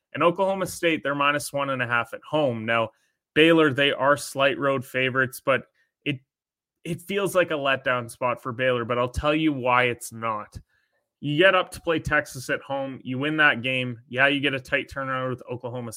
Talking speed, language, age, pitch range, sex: 205 wpm, English, 20-39, 125-150 Hz, male